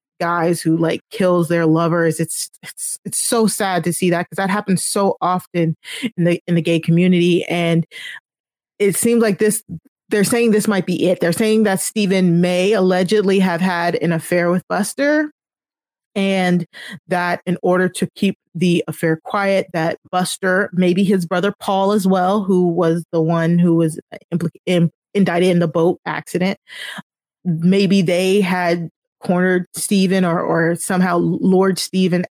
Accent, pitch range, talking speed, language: American, 170-200 Hz, 160 wpm, English